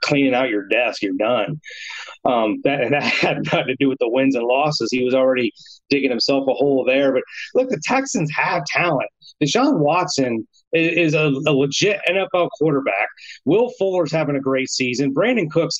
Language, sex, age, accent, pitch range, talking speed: English, male, 30-49, American, 135-165 Hz, 180 wpm